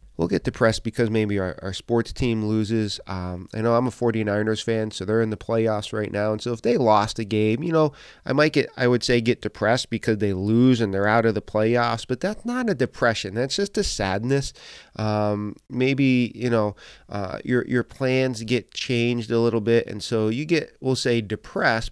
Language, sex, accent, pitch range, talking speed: English, male, American, 105-130 Hz, 215 wpm